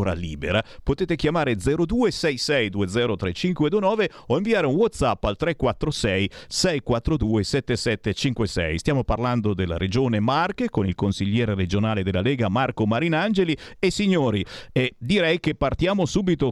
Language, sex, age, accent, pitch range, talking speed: Italian, male, 50-69, native, 100-145 Hz, 120 wpm